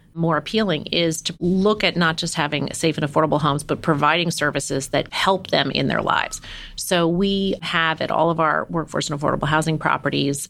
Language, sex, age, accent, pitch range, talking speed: English, female, 30-49, American, 150-175 Hz, 195 wpm